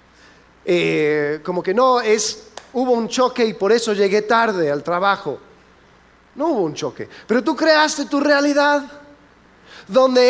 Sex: male